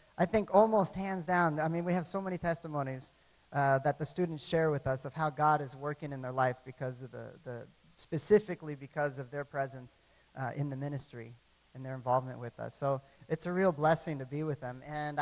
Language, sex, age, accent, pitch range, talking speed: English, male, 40-59, American, 140-170 Hz, 215 wpm